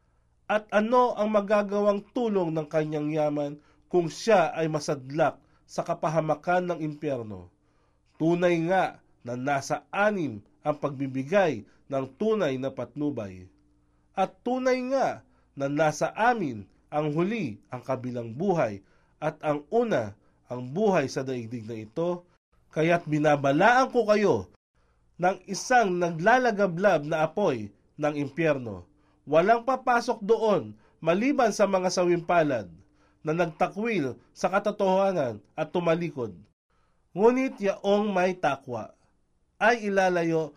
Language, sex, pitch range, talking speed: Filipino, male, 135-205 Hz, 115 wpm